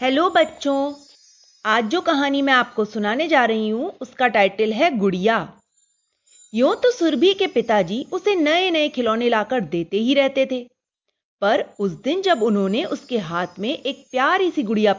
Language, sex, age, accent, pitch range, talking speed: Hindi, female, 30-49, native, 210-300 Hz, 165 wpm